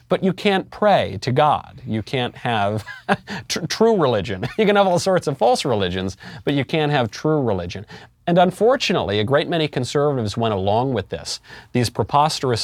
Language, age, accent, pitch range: English, 40-59, American, 105-140 Hz